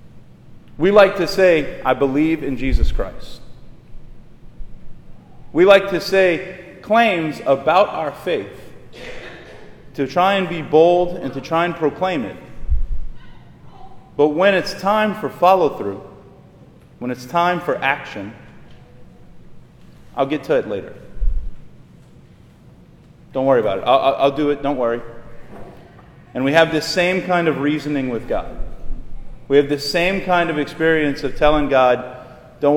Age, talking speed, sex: 30-49, 140 wpm, male